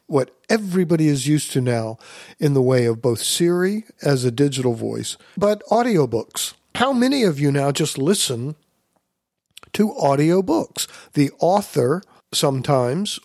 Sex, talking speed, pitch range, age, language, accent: male, 135 wpm, 125-170 Hz, 50-69, English, American